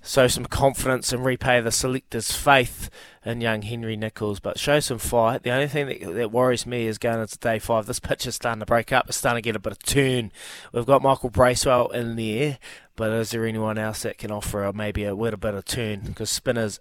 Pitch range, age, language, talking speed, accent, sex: 105-130 Hz, 20-39, English, 230 wpm, Australian, male